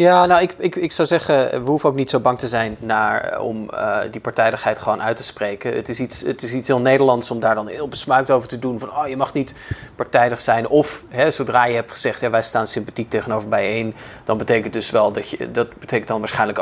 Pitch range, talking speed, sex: 110-135 Hz, 230 wpm, male